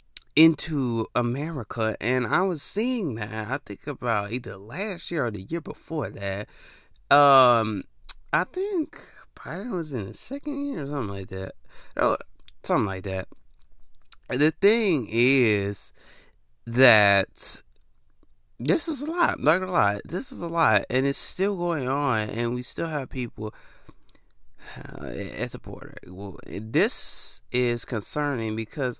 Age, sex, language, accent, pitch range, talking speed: 20-39, male, English, American, 110-155 Hz, 145 wpm